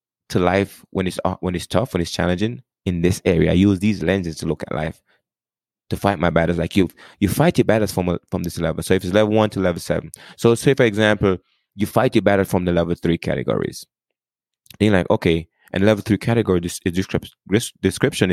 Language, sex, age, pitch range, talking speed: English, male, 20-39, 90-115 Hz, 225 wpm